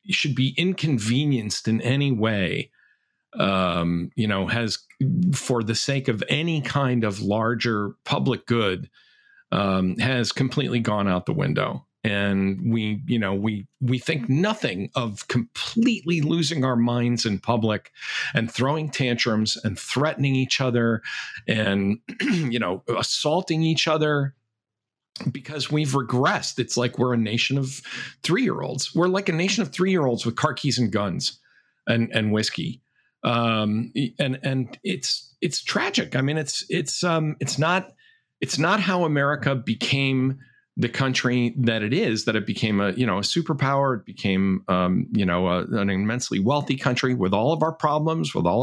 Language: English